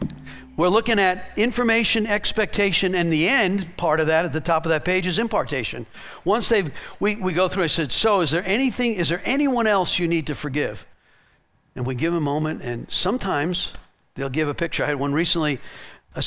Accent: American